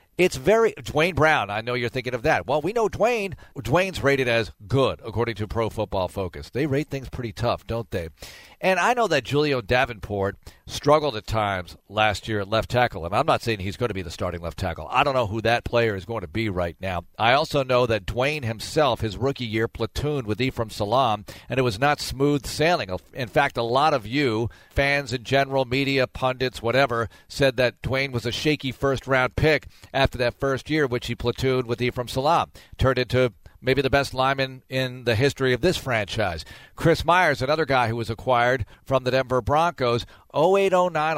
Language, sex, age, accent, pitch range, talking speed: English, male, 50-69, American, 110-140 Hz, 205 wpm